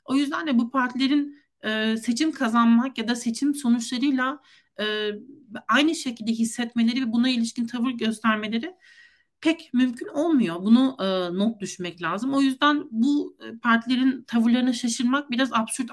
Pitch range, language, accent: 225-270 Hz, Turkish, native